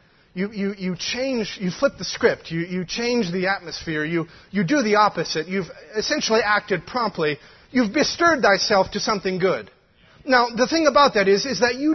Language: English